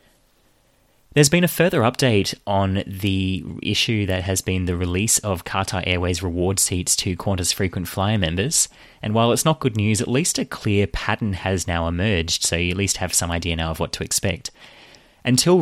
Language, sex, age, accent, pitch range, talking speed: English, male, 20-39, Australian, 90-110 Hz, 190 wpm